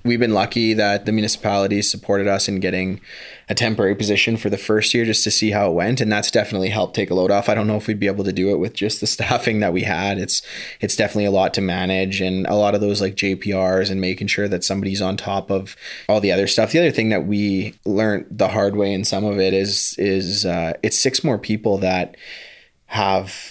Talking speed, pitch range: 250 wpm, 95-105 Hz